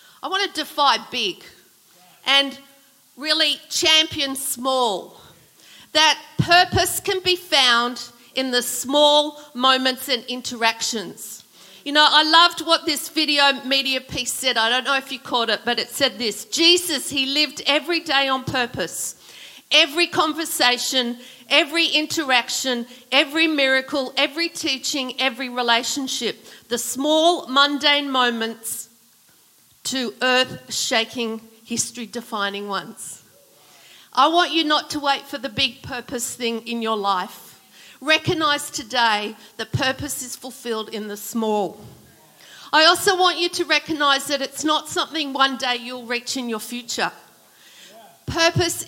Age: 50-69